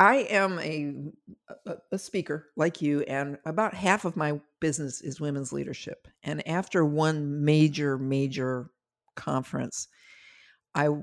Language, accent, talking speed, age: English, American, 125 wpm, 50-69